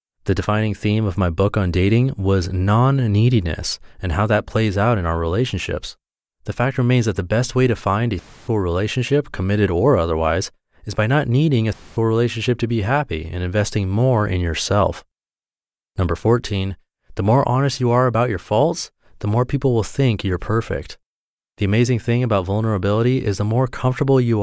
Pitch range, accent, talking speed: 100-125 Hz, American, 185 wpm